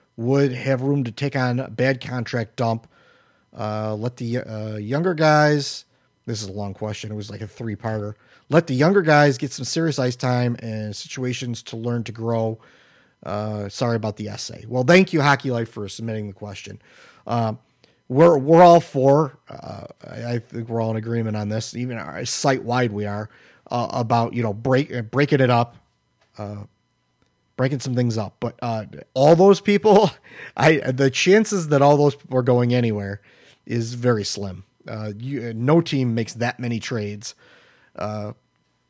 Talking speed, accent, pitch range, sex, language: 180 wpm, American, 110-140 Hz, male, English